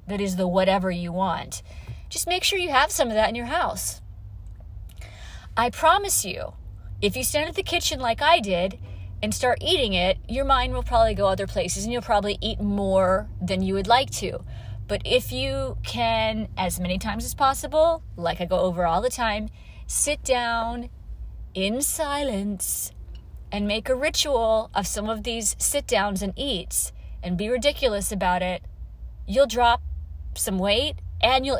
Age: 30-49